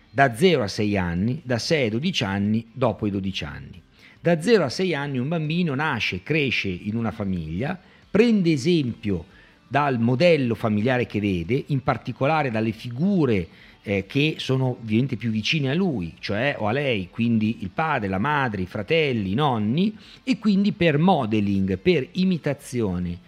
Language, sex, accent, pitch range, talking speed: Italian, male, native, 110-170 Hz, 165 wpm